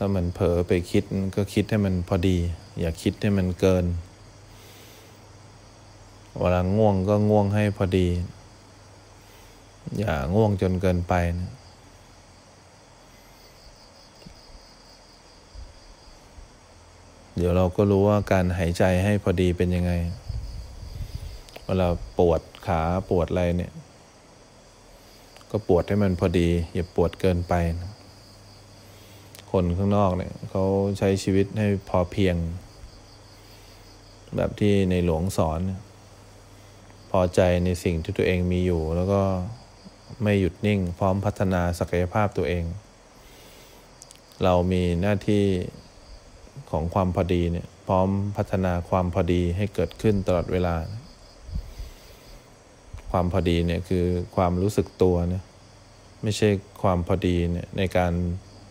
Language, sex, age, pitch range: English, male, 20-39, 90-100 Hz